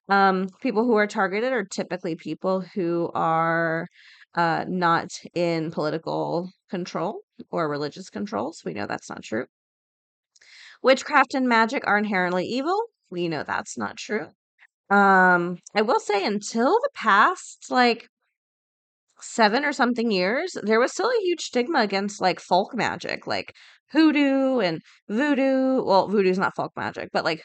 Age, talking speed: 20-39, 150 wpm